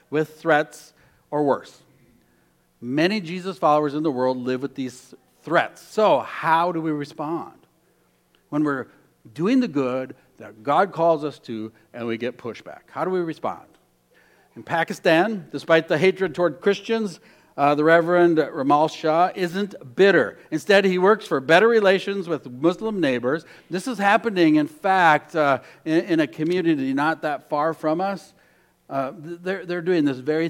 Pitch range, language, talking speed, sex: 140-190 Hz, English, 160 wpm, male